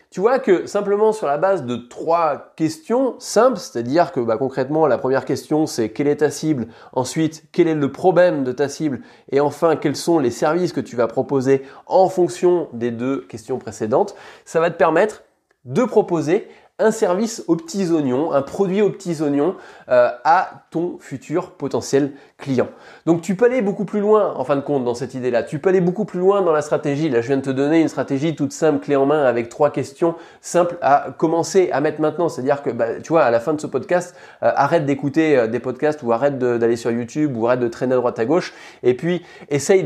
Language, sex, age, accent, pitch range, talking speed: French, male, 20-39, French, 135-175 Hz, 220 wpm